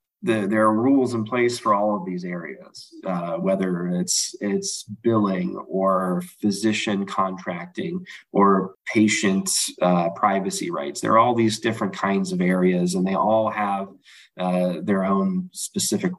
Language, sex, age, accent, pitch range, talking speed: English, male, 30-49, American, 90-105 Hz, 150 wpm